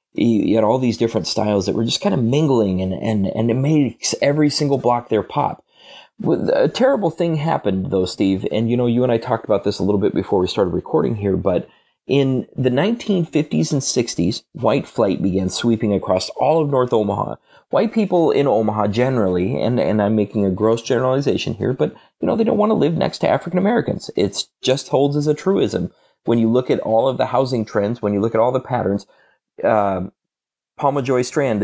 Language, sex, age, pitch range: English, male, 30-49, 100-130 Hz